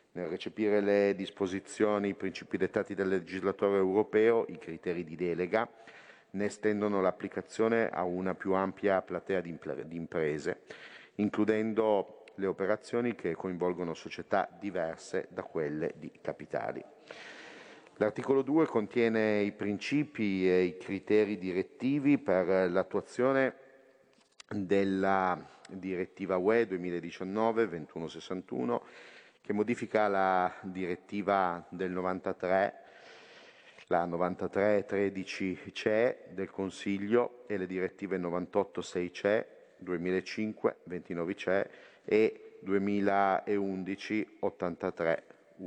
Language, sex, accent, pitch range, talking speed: Italian, male, native, 90-105 Hz, 90 wpm